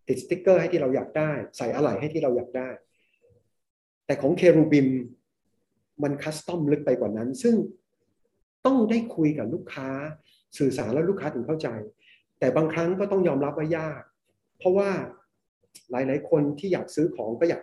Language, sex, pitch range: English, male, 140-190 Hz